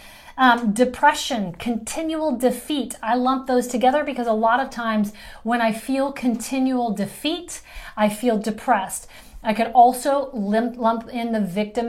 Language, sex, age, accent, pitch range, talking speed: English, female, 30-49, American, 220-270 Hz, 145 wpm